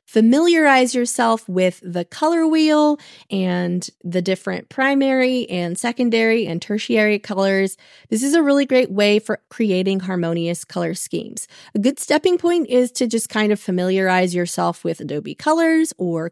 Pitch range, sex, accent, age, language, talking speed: 185-260 Hz, female, American, 30-49, English, 150 wpm